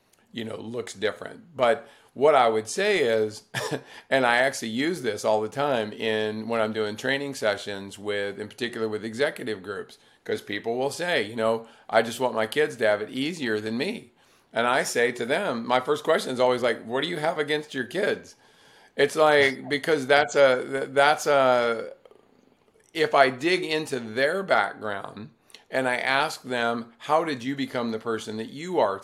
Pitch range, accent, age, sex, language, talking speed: 110-145 Hz, American, 50-69, male, English, 190 wpm